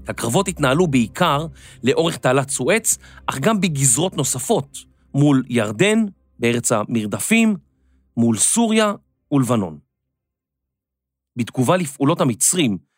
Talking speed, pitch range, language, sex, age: 90 wpm, 110-180 Hz, Hebrew, male, 40-59